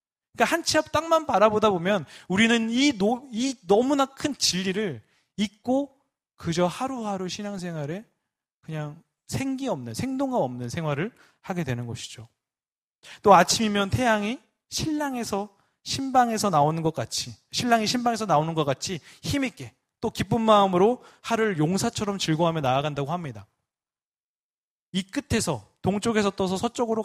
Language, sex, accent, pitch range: Korean, male, native, 140-225 Hz